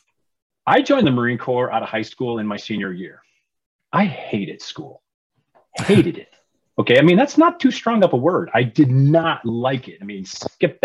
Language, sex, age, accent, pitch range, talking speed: English, male, 30-49, American, 105-130 Hz, 200 wpm